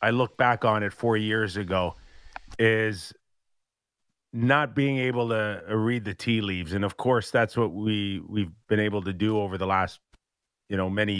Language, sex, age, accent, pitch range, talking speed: English, male, 40-59, American, 100-125 Hz, 180 wpm